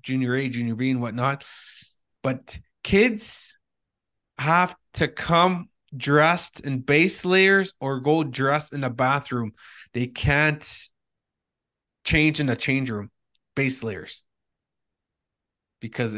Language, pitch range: English, 125-150 Hz